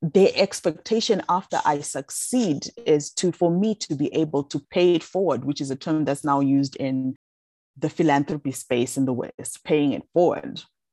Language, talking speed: English, 180 wpm